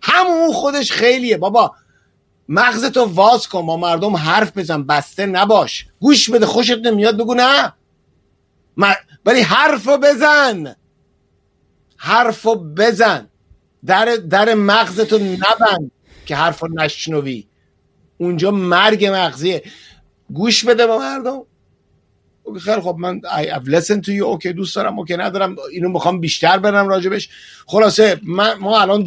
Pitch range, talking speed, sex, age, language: 160-220 Hz, 125 wpm, male, 50-69, Persian